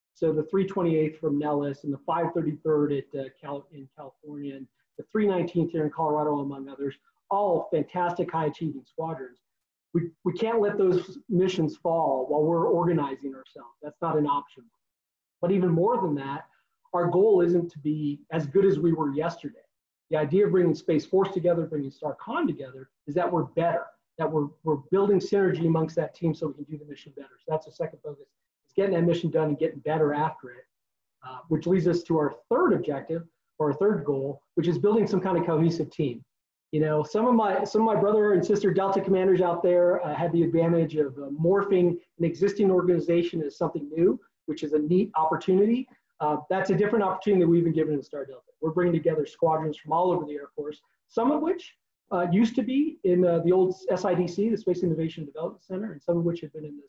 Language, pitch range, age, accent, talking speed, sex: English, 150-185 Hz, 30-49, American, 210 wpm, male